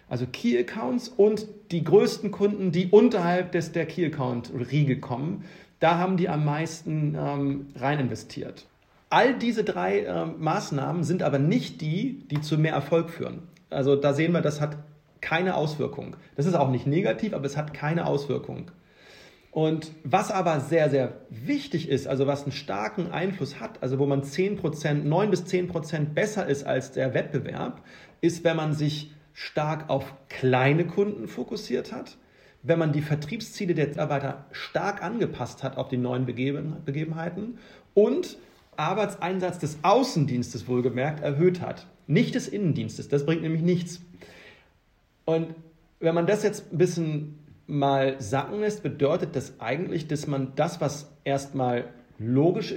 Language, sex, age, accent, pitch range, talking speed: German, male, 40-59, German, 140-180 Hz, 150 wpm